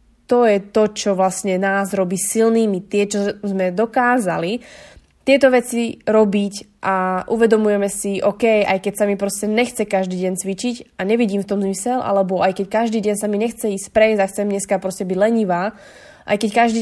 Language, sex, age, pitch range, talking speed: Slovak, female, 20-39, 195-225 Hz, 185 wpm